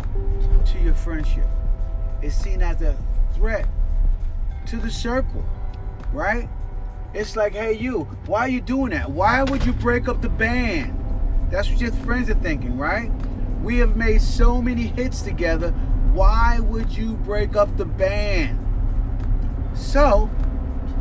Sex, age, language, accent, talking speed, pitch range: male, 30-49, English, American, 145 wpm, 80-105 Hz